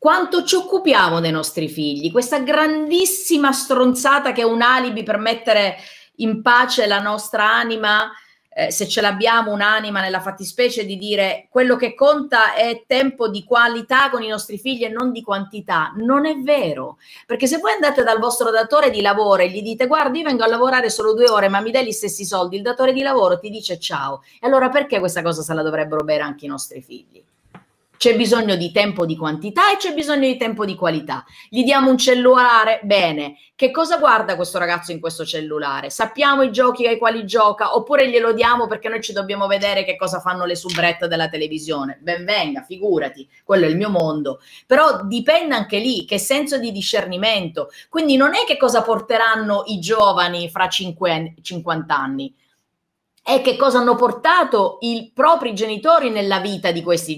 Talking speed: 190 wpm